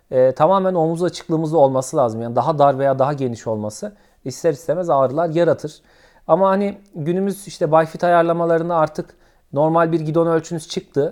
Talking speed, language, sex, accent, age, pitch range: 155 wpm, Turkish, male, native, 40-59, 125-165 Hz